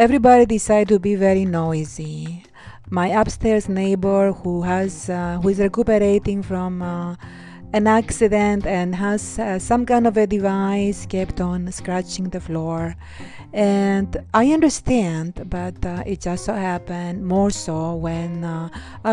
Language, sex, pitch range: English, female, 170-215 Hz